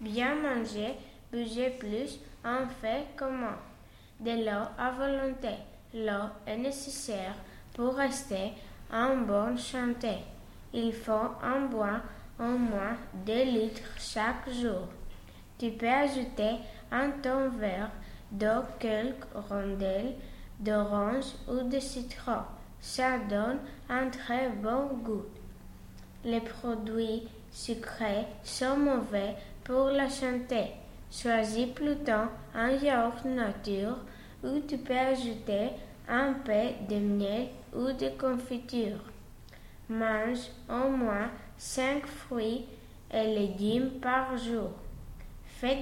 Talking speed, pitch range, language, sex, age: 105 wpm, 215-255 Hz, French, female, 20-39